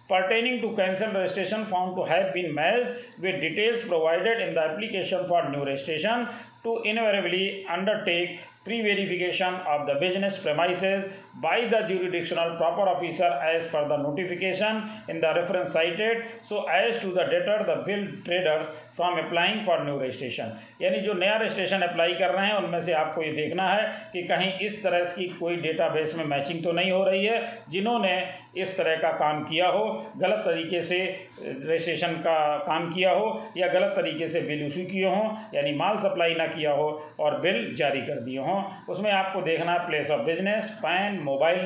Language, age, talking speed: Hindi, 40-59, 185 wpm